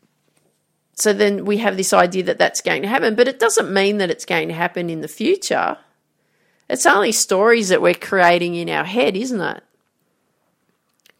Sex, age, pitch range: female, 40-59, 170-230 Hz